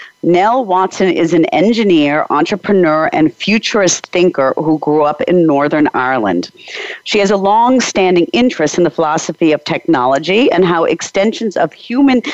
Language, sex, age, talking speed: English, female, 50-69, 150 wpm